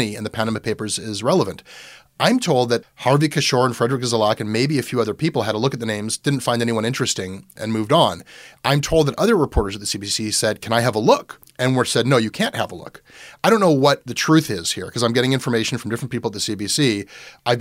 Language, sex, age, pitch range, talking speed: English, male, 30-49, 110-130 Hz, 255 wpm